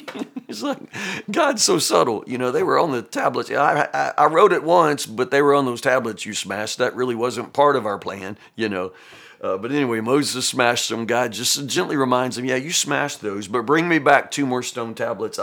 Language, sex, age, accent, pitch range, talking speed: English, male, 50-69, American, 115-145 Hz, 220 wpm